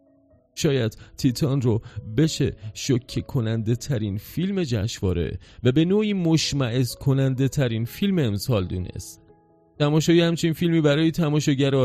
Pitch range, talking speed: 100-140 Hz, 115 wpm